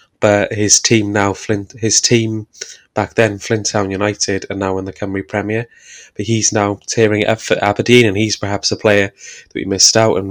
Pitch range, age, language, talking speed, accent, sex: 100-110 Hz, 20-39, English, 205 wpm, British, male